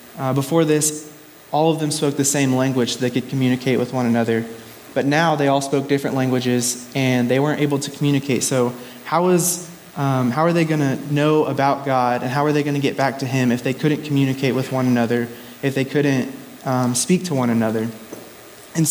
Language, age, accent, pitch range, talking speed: English, 20-39, American, 125-145 Hz, 215 wpm